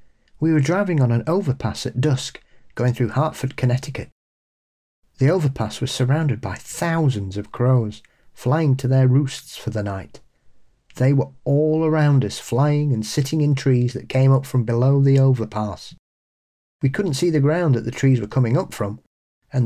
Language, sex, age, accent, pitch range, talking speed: English, male, 40-59, British, 115-140 Hz, 175 wpm